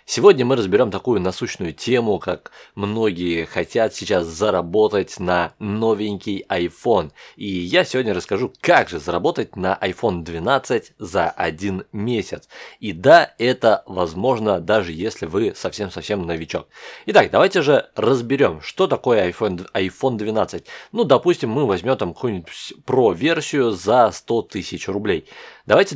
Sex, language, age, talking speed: male, Russian, 20-39, 125 wpm